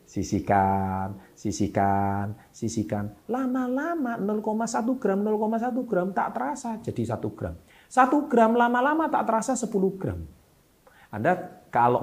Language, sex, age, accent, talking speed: Indonesian, male, 40-59, native, 110 wpm